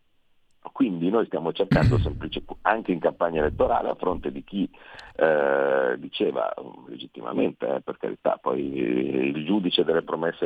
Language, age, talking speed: Italian, 50-69, 140 wpm